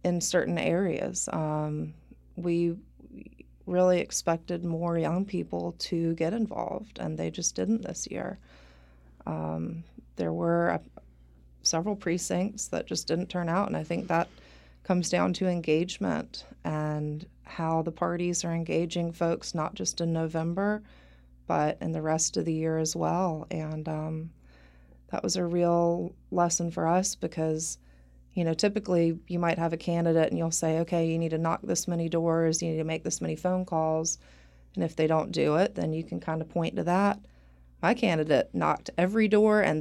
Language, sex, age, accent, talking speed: English, female, 30-49, American, 175 wpm